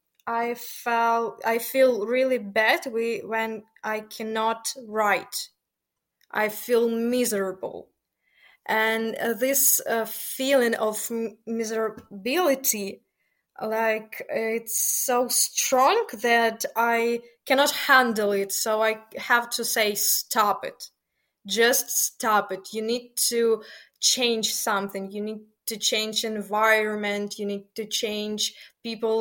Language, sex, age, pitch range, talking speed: English, female, 20-39, 215-245 Hz, 105 wpm